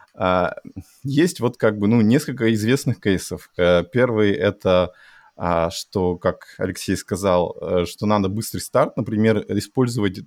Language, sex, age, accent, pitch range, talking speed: Russian, male, 20-39, native, 95-110 Hz, 145 wpm